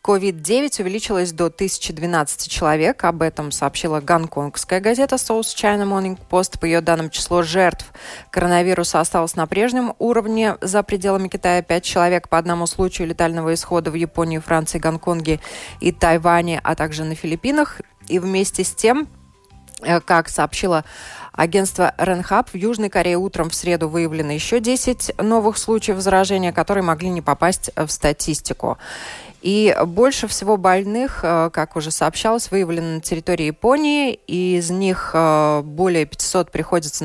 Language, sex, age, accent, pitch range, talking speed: Russian, female, 20-39, native, 165-205 Hz, 140 wpm